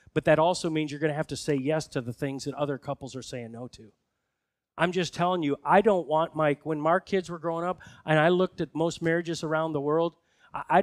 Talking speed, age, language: 250 wpm, 40-59, English